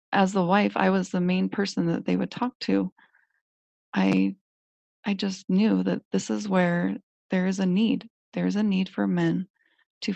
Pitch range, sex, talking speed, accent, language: 170-215 Hz, female, 190 wpm, American, English